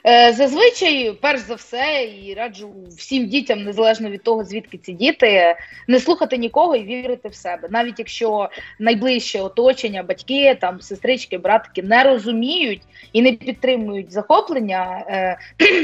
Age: 20-39